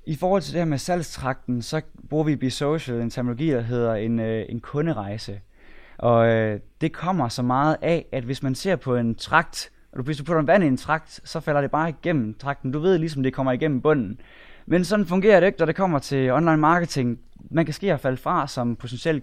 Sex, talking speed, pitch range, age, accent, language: male, 230 wpm, 120-155 Hz, 20-39, native, Danish